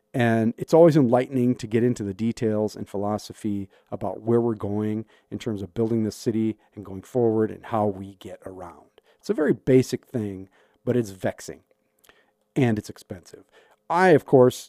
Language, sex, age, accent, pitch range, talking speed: English, male, 40-59, American, 105-135 Hz, 175 wpm